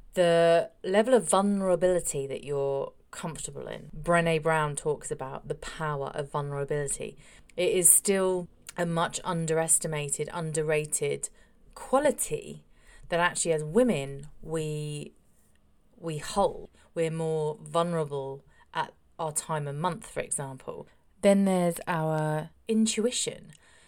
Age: 30-49